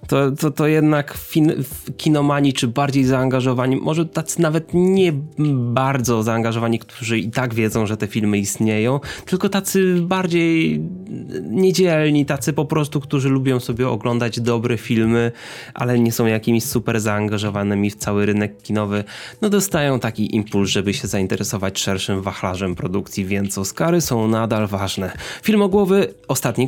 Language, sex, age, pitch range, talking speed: Polish, male, 20-39, 110-150 Hz, 140 wpm